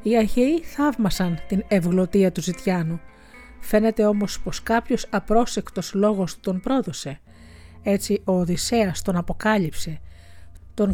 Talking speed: 115 wpm